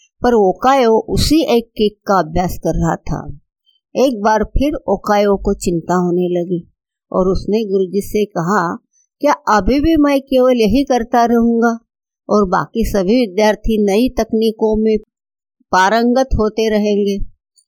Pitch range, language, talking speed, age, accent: 185-245 Hz, Hindi, 140 wpm, 60-79, native